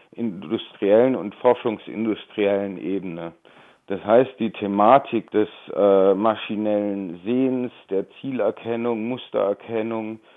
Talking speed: 85 wpm